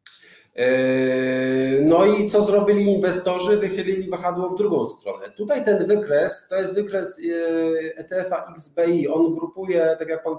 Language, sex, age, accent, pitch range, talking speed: Polish, male, 40-59, native, 150-185 Hz, 135 wpm